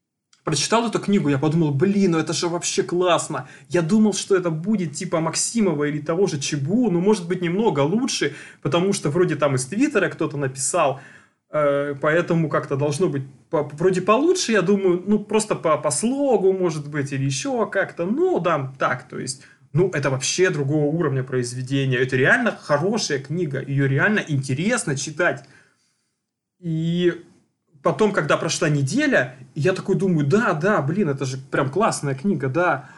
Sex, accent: male, native